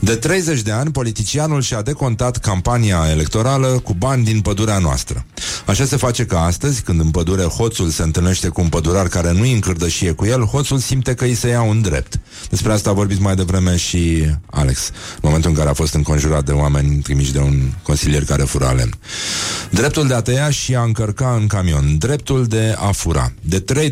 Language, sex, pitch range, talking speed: Romanian, male, 85-115 Hz, 200 wpm